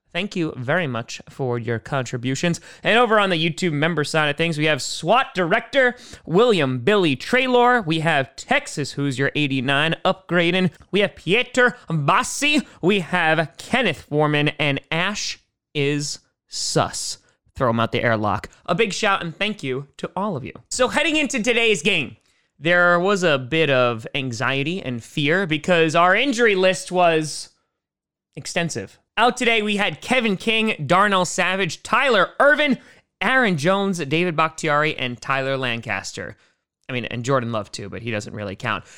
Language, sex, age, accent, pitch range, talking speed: English, male, 20-39, American, 135-195 Hz, 160 wpm